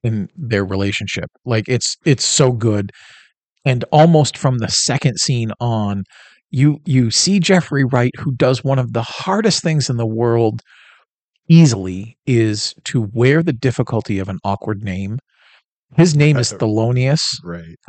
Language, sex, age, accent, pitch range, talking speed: English, male, 40-59, American, 110-145 Hz, 150 wpm